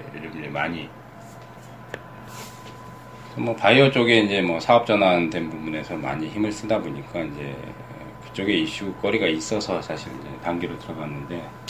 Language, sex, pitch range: Korean, male, 85-115 Hz